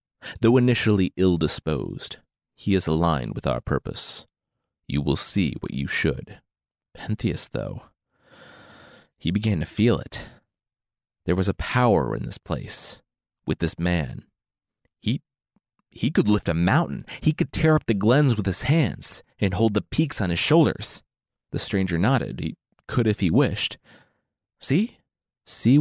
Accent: American